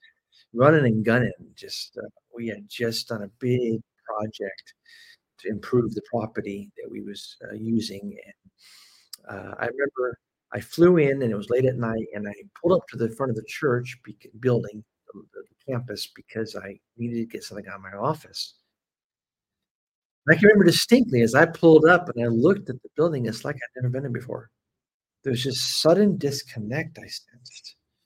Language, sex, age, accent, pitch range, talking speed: English, male, 50-69, American, 110-145 Hz, 175 wpm